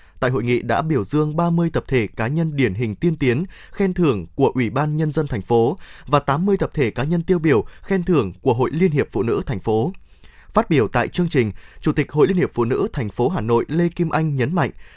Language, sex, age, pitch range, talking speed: Vietnamese, male, 20-39, 130-185 Hz, 255 wpm